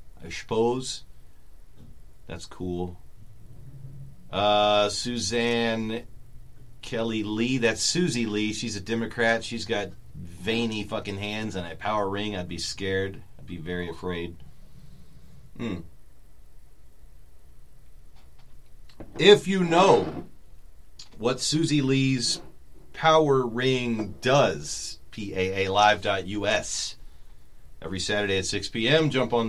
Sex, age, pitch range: male, 40-59, 85-120 Hz